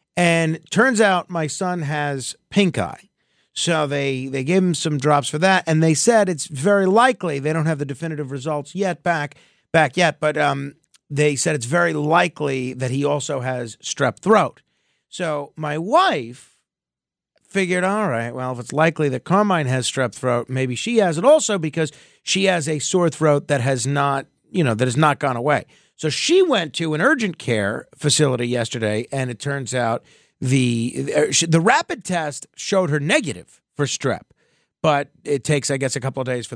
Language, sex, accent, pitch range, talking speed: English, male, American, 130-170 Hz, 185 wpm